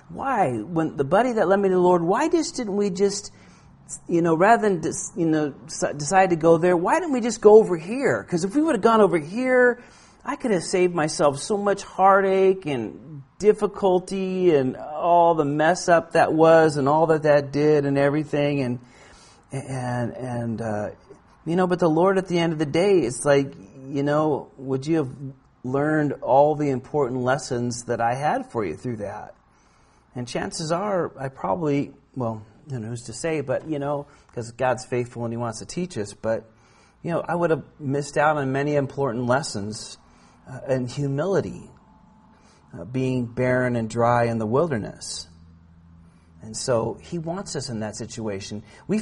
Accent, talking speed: American, 190 wpm